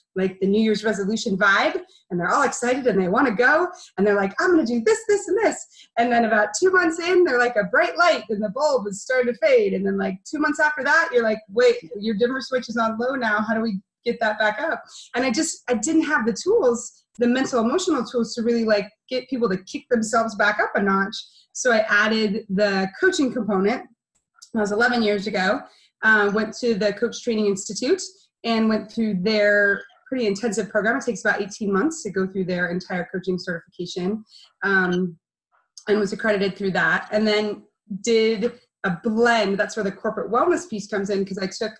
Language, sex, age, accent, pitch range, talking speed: English, female, 30-49, American, 200-245 Hz, 215 wpm